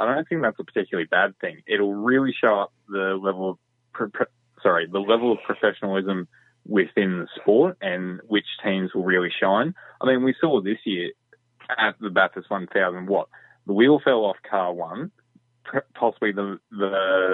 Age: 20-39